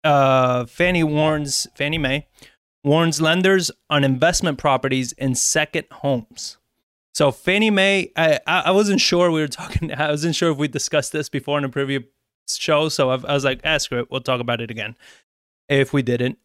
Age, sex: 20-39, male